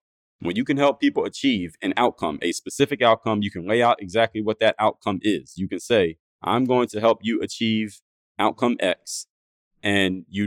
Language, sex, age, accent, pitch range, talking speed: English, male, 30-49, American, 95-115 Hz, 190 wpm